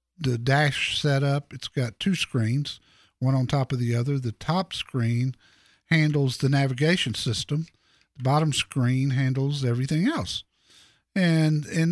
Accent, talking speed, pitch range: American, 140 wpm, 125-165 Hz